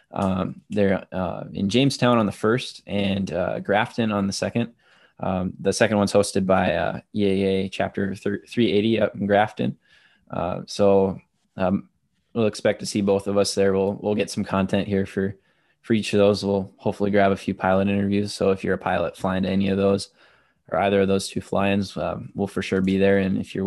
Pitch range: 95-105 Hz